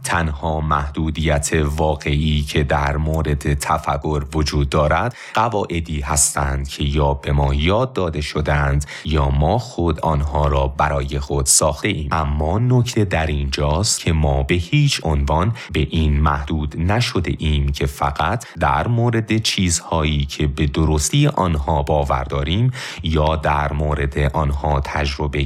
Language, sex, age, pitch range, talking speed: Persian, male, 30-49, 75-90 Hz, 135 wpm